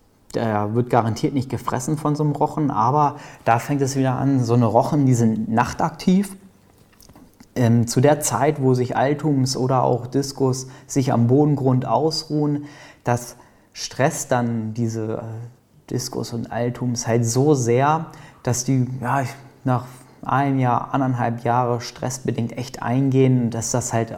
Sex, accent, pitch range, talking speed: male, German, 120-135 Hz, 145 wpm